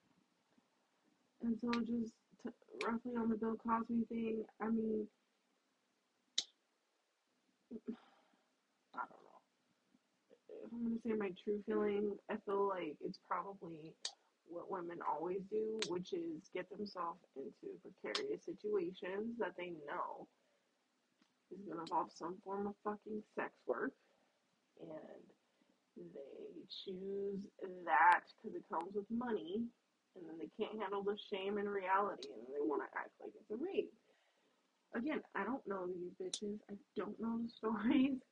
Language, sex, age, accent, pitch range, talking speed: English, female, 30-49, American, 195-235 Hz, 140 wpm